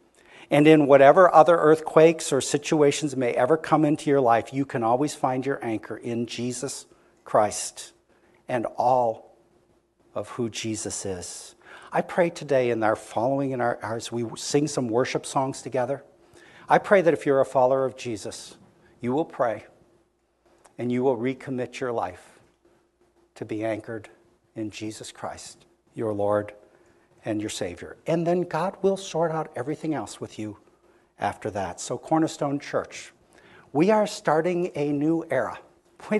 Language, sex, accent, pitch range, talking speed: English, male, American, 120-160 Hz, 155 wpm